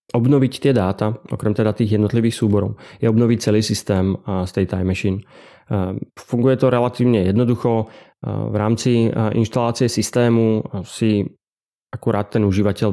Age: 30-49